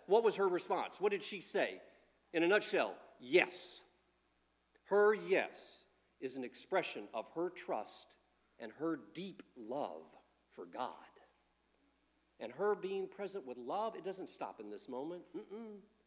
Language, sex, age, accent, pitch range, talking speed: English, male, 50-69, American, 150-205 Hz, 145 wpm